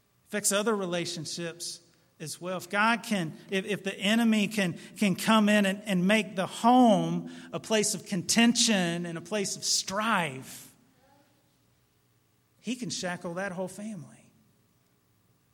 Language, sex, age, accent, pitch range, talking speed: English, male, 40-59, American, 155-205 Hz, 135 wpm